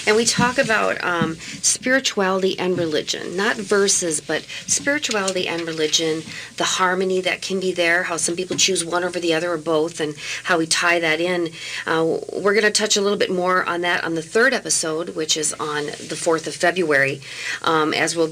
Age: 40-59